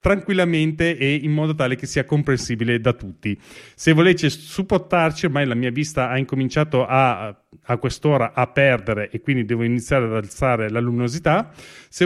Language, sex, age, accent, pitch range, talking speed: Italian, male, 30-49, native, 125-165 Hz, 165 wpm